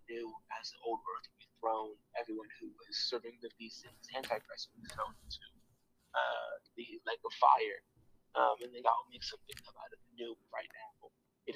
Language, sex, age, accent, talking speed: English, male, 20-39, American, 185 wpm